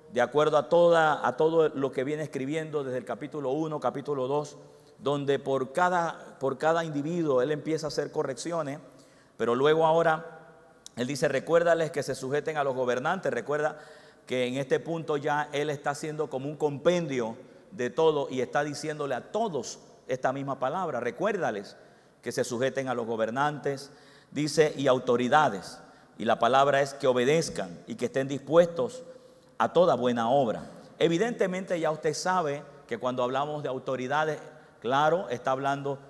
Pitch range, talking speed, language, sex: 135-160 Hz, 160 wpm, Spanish, male